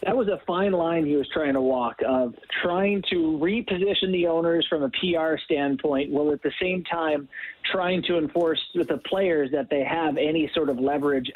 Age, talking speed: 30-49, 200 wpm